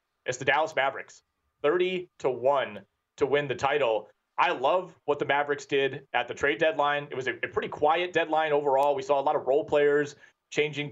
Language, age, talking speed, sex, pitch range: English, 30-49, 200 wpm, male, 135-180 Hz